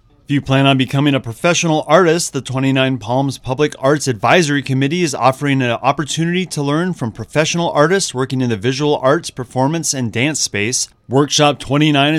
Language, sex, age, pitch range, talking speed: English, male, 30-49, 130-155 Hz, 170 wpm